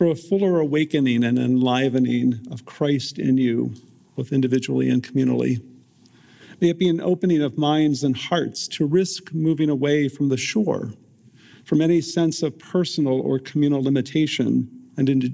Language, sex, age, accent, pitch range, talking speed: English, male, 50-69, American, 130-165 Hz, 155 wpm